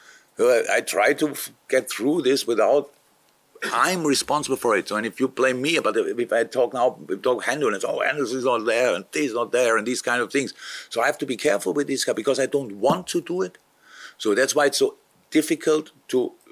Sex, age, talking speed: male, 50-69, 235 wpm